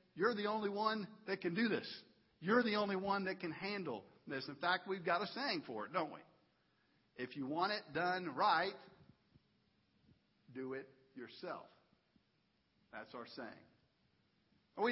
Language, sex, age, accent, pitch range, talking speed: English, male, 50-69, American, 185-225 Hz, 155 wpm